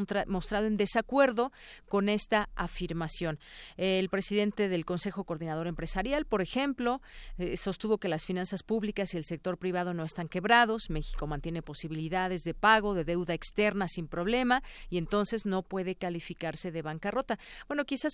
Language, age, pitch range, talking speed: Spanish, 40-59, 170-210 Hz, 150 wpm